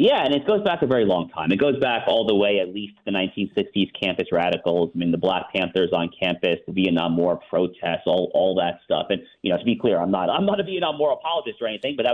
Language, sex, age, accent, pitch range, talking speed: English, male, 40-59, American, 95-115 Hz, 270 wpm